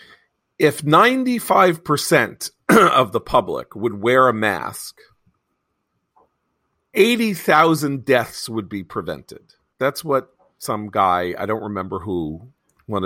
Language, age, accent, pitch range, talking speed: English, 40-59, American, 105-155 Hz, 105 wpm